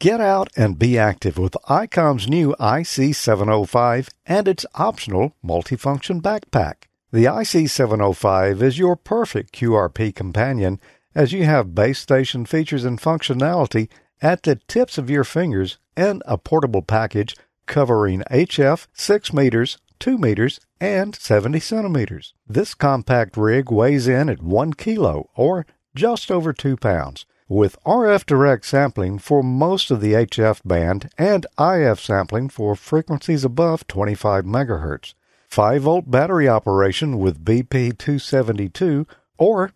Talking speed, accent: 130 wpm, American